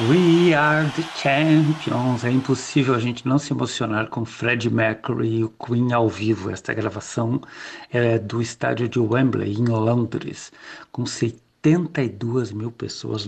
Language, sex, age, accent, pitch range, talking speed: Portuguese, male, 60-79, Brazilian, 115-140 Hz, 150 wpm